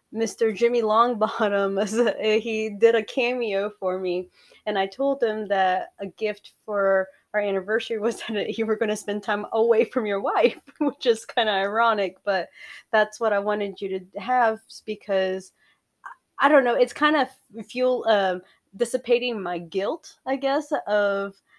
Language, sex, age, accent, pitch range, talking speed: English, female, 20-39, American, 195-235 Hz, 165 wpm